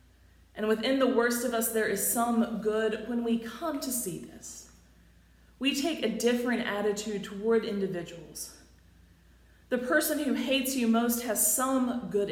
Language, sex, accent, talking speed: English, female, American, 155 wpm